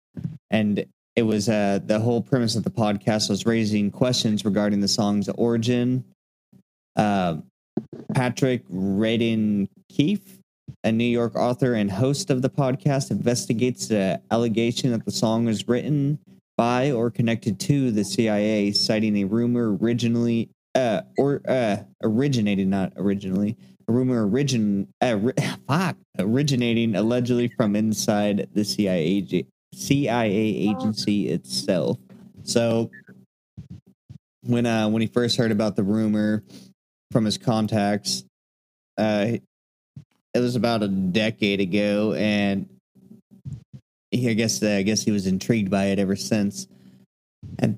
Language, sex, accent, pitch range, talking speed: English, male, American, 100-120 Hz, 135 wpm